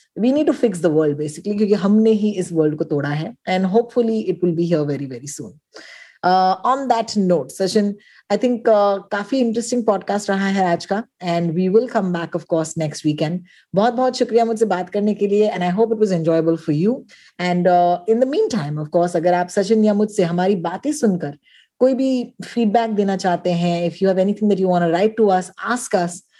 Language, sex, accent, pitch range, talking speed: Hindi, female, native, 175-230 Hz, 175 wpm